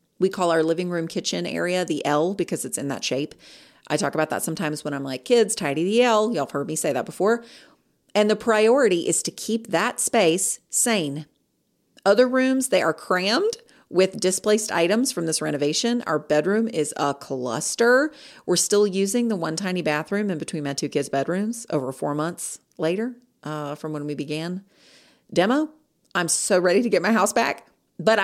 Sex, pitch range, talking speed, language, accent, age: female, 155-220 Hz, 190 wpm, English, American, 40-59